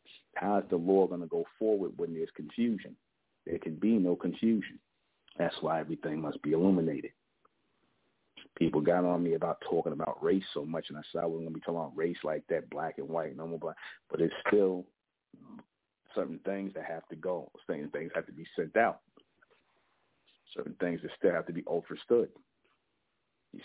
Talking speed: 195 wpm